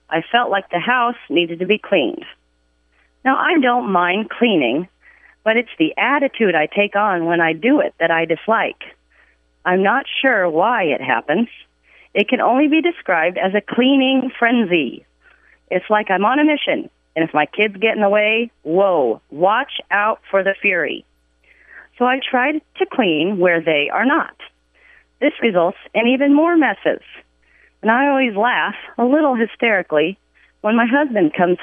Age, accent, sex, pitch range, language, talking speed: 40-59, American, female, 175-260 Hz, English, 170 wpm